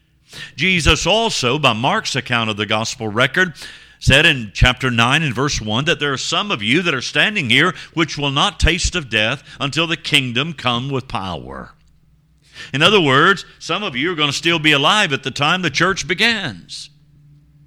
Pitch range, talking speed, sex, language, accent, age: 125-160 Hz, 190 wpm, male, English, American, 50-69